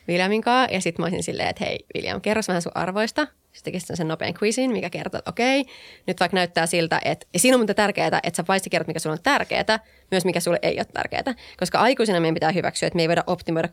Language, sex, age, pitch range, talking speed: Finnish, female, 20-39, 165-205 Hz, 240 wpm